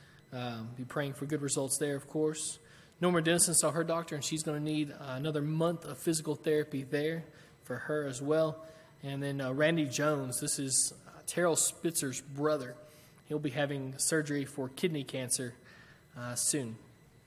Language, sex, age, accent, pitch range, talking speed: English, male, 20-39, American, 135-155 Hz, 175 wpm